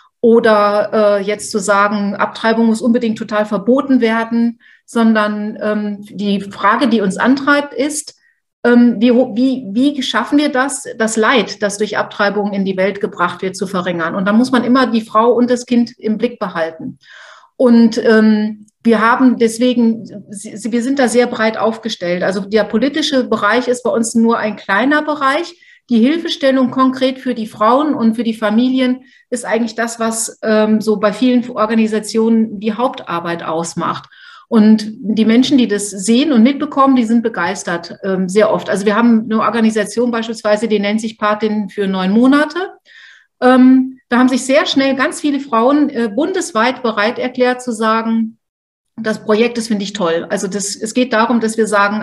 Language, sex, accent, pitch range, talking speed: German, female, German, 210-250 Hz, 175 wpm